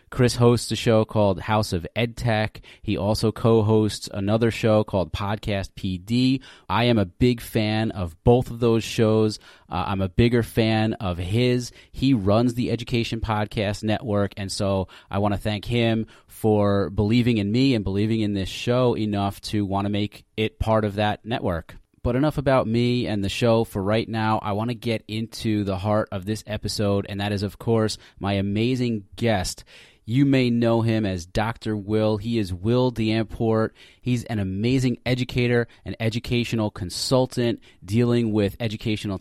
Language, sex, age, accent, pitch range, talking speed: English, male, 30-49, American, 100-120 Hz, 175 wpm